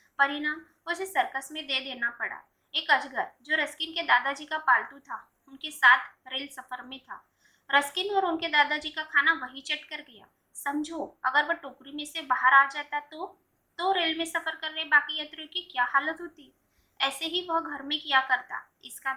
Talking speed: 195 wpm